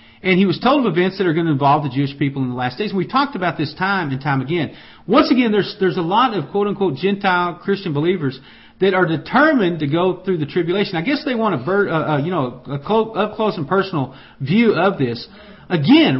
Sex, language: male, English